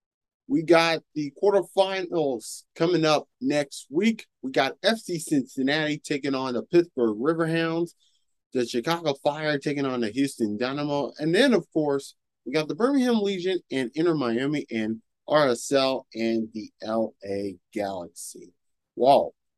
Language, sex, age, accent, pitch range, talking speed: English, male, 30-49, American, 115-165 Hz, 130 wpm